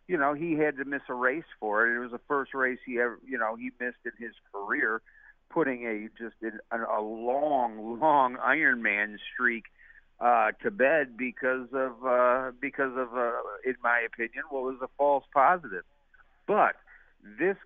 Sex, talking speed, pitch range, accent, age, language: male, 175 wpm, 125-160 Hz, American, 50-69, English